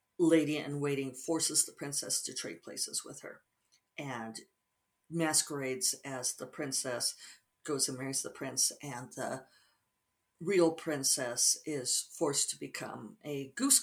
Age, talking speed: 50-69, 135 wpm